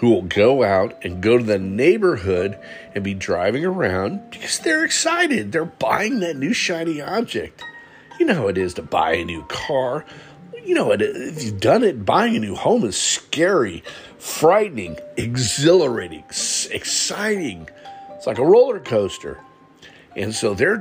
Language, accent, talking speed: English, American, 160 wpm